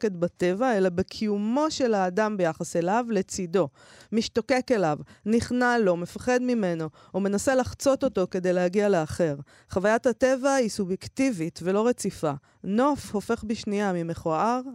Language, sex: Hebrew, female